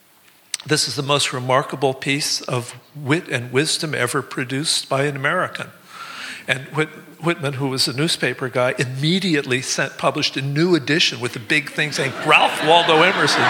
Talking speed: 165 wpm